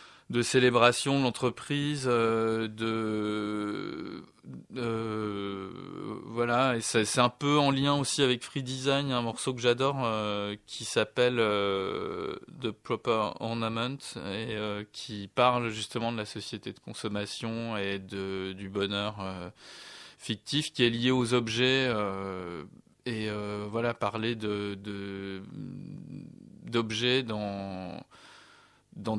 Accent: French